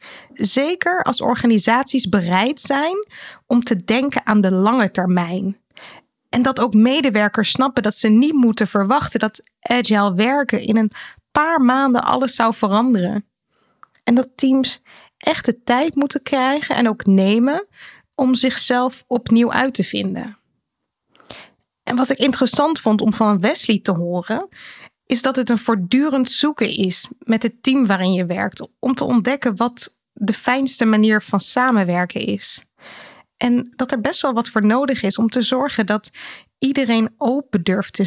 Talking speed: 155 wpm